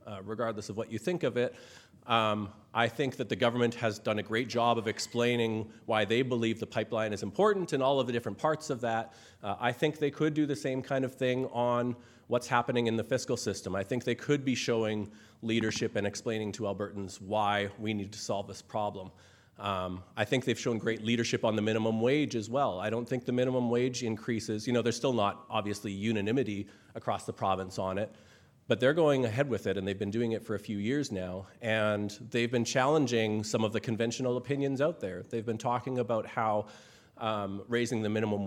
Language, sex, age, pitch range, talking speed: English, male, 40-59, 105-125 Hz, 220 wpm